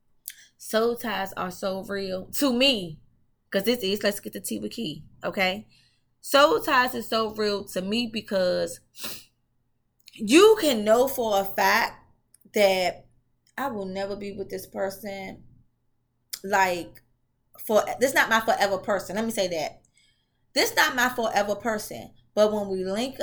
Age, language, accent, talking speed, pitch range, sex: 20-39, English, American, 155 wpm, 185-255 Hz, female